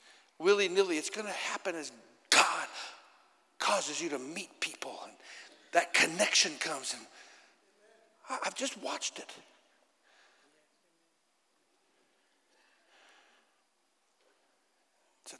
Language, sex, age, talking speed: English, male, 60-79, 80 wpm